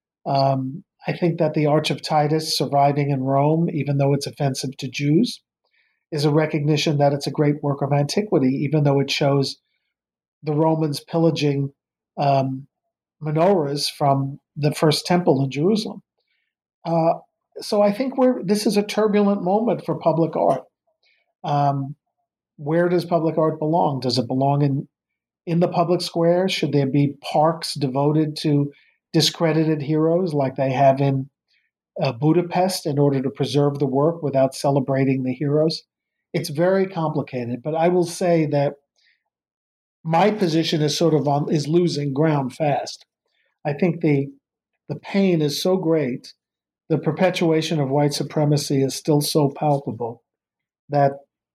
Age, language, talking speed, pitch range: 50-69, English, 150 wpm, 140-170 Hz